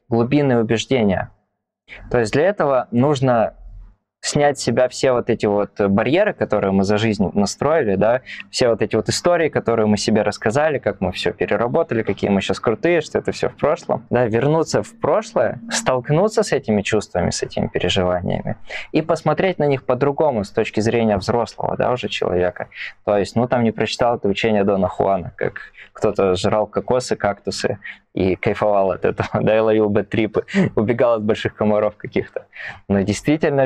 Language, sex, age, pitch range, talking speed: Russian, male, 20-39, 100-130 Hz, 170 wpm